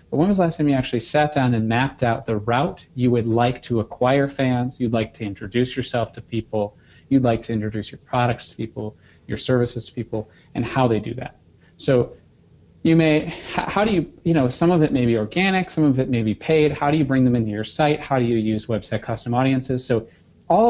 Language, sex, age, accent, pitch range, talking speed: English, male, 30-49, American, 115-150 Hz, 240 wpm